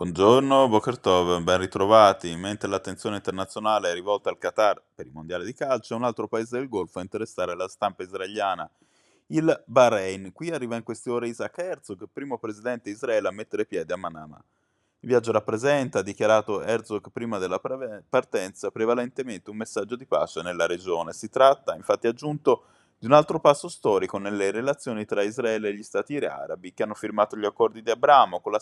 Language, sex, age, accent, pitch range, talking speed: Italian, male, 20-39, native, 100-130 Hz, 180 wpm